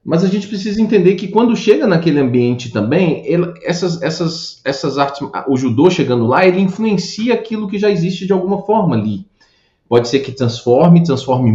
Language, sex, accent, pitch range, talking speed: Portuguese, male, Brazilian, 125-185 Hz, 180 wpm